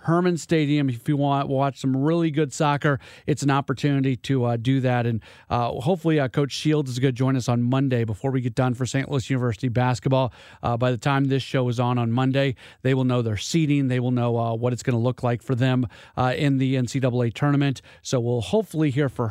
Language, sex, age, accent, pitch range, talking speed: English, male, 40-59, American, 125-145 Hz, 240 wpm